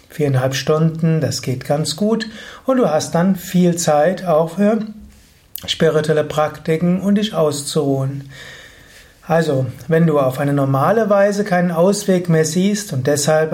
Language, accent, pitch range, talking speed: German, German, 145-180 Hz, 140 wpm